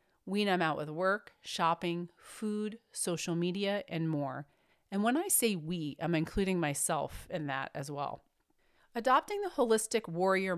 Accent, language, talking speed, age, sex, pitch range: American, English, 155 wpm, 40-59, female, 160-205 Hz